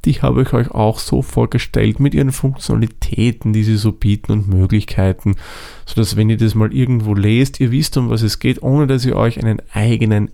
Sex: male